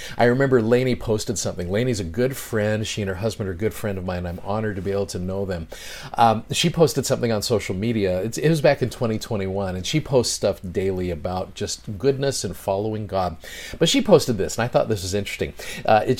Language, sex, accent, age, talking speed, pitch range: English, male, American, 40-59, 230 wpm, 95-125 Hz